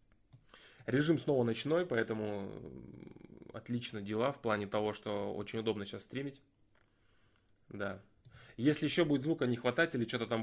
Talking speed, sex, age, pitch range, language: 140 wpm, male, 20-39, 110-130 Hz, Russian